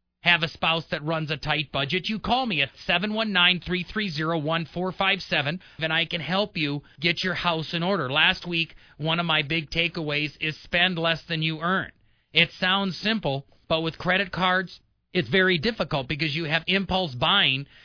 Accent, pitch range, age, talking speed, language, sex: American, 155-185 Hz, 40-59, 170 wpm, English, male